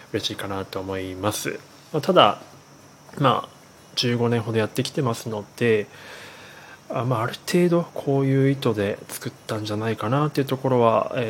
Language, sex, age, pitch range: Japanese, male, 20-39, 110-135 Hz